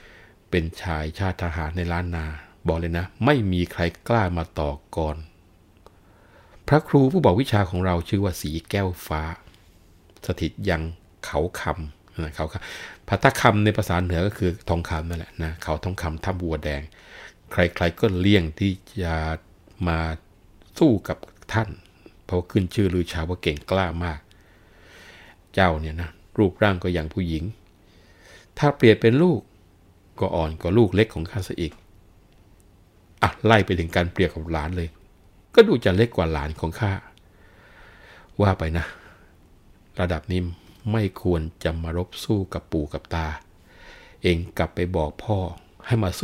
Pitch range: 80-95 Hz